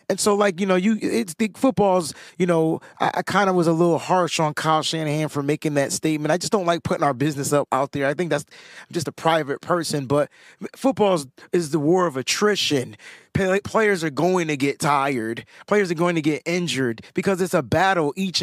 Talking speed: 220 wpm